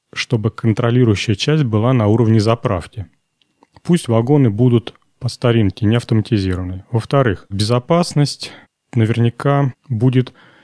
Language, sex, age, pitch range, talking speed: Russian, male, 30-49, 110-135 Hz, 100 wpm